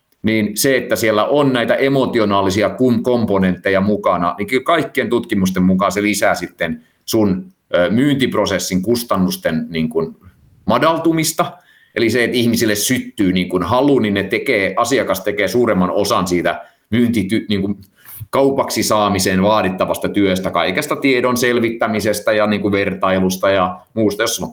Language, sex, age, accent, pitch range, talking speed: Finnish, male, 30-49, native, 90-115 Hz, 130 wpm